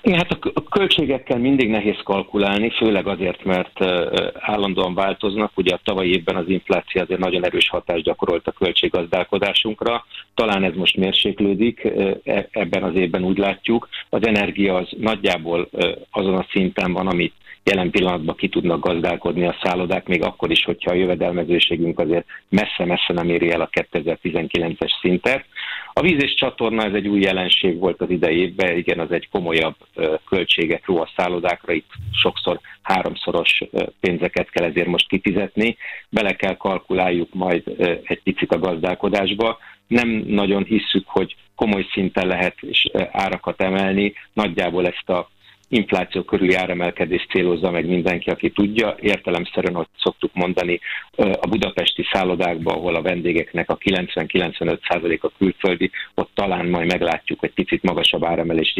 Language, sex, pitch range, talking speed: Hungarian, male, 85-100 Hz, 145 wpm